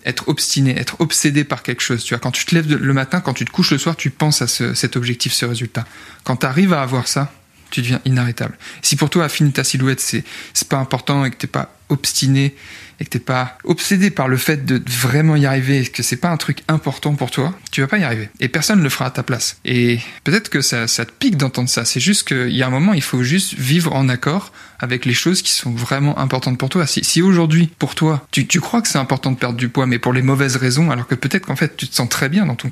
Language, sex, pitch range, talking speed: French, male, 125-155 Hz, 280 wpm